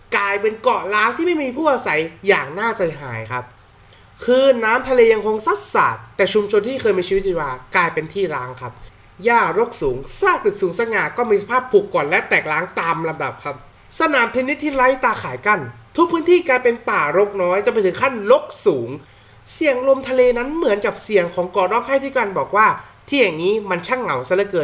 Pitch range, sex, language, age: 180-295 Hz, male, Thai, 20-39